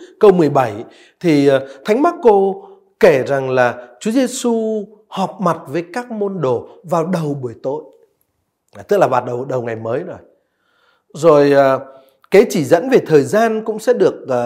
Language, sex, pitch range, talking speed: Vietnamese, male, 150-225 Hz, 160 wpm